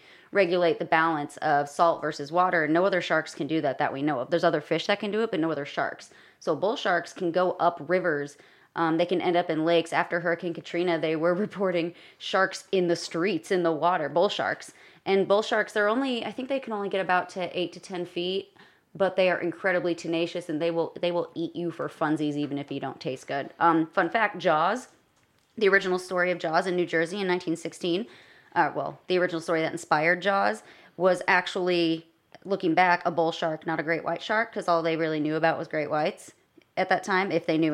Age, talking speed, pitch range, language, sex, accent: 30-49, 225 wpm, 160-180 Hz, English, female, American